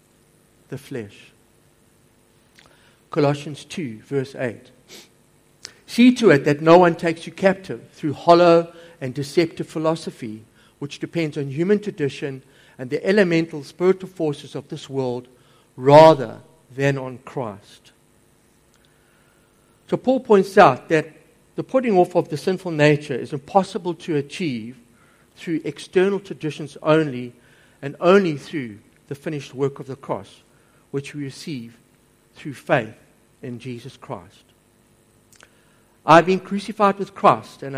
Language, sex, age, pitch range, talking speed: English, male, 60-79, 125-165 Hz, 125 wpm